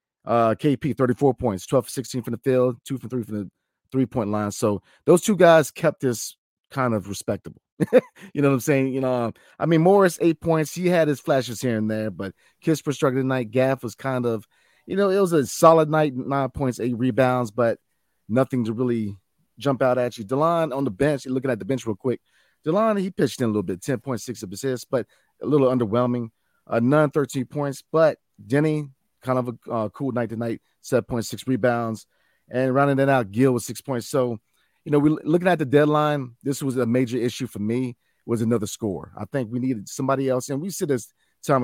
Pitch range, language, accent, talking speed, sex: 115-140 Hz, English, American, 215 wpm, male